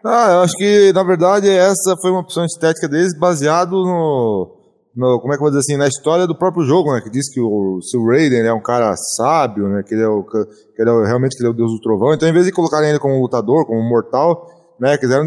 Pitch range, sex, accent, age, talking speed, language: 125-175 Hz, male, Brazilian, 20-39, 265 wpm, Portuguese